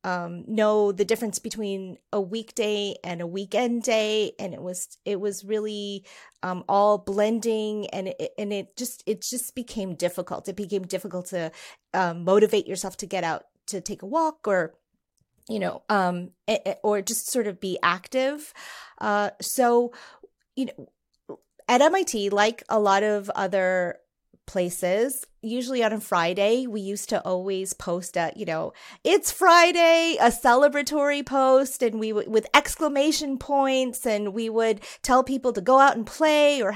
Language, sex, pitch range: English, female, 195-250 Hz